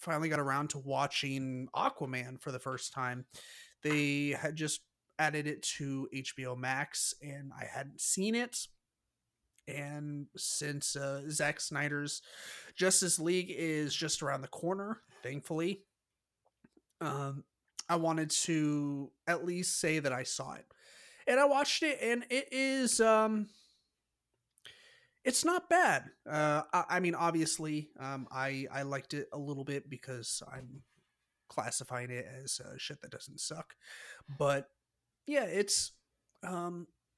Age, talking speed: 30-49, 140 wpm